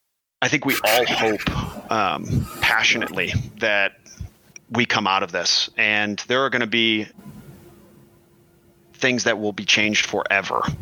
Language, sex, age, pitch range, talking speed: English, male, 30-49, 100-120 Hz, 140 wpm